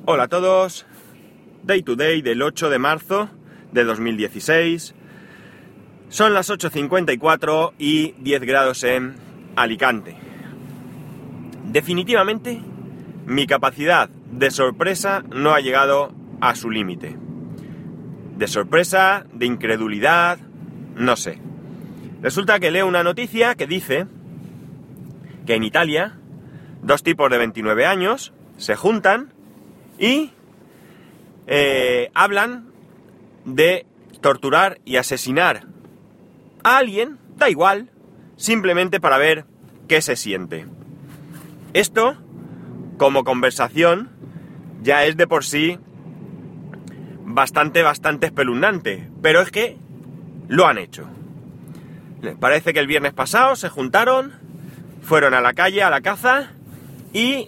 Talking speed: 110 wpm